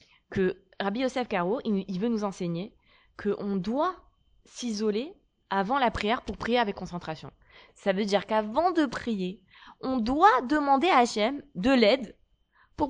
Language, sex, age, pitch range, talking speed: French, female, 20-39, 200-285 Hz, 155 wpm